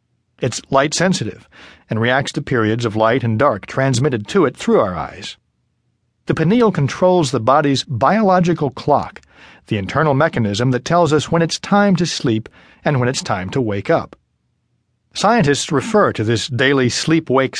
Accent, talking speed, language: American, 160 wpm, English